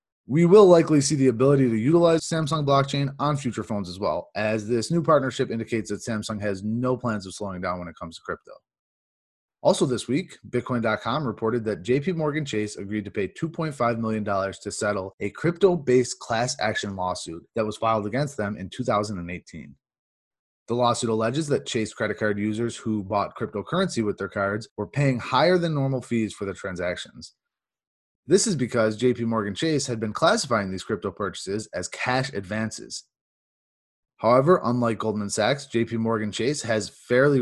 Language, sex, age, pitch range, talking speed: English, male, 30-49, 105-135 Hz, 170 wpm